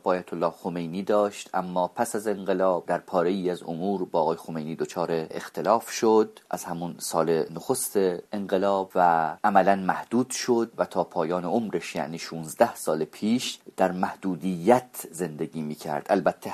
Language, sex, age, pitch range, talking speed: English, male, 30-49, 90-115 Hz, 150 wpm